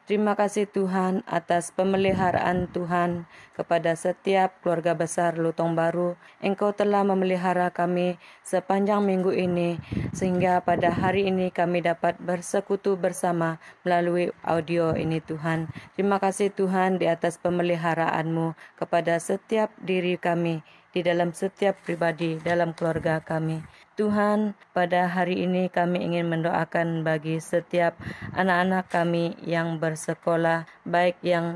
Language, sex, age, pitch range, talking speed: Malay, female, 20-39, 170-185 Hz, 120 wpm